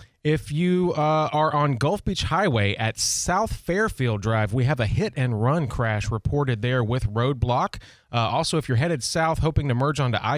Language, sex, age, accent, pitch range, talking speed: English, male, 30-49, American, 115-140 Hz, 180 wpm